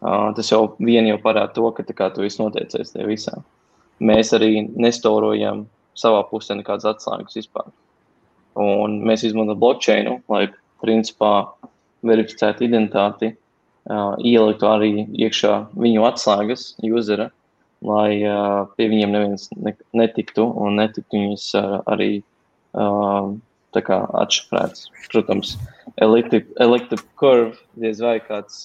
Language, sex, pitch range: English, male, 105-110 Hz